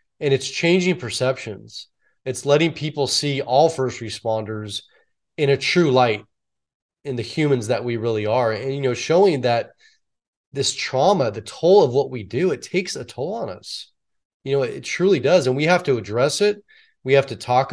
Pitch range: 125-160 Hz